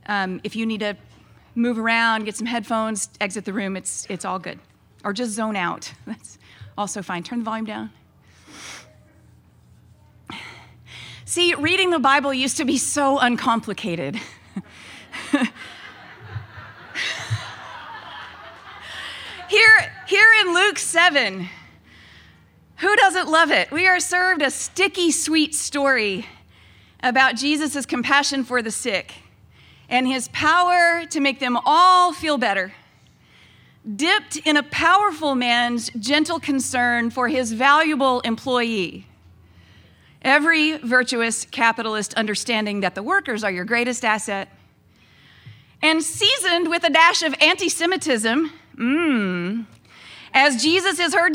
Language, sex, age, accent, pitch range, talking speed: English, female, 40-59, American, 210-315 Hz, 120 wpm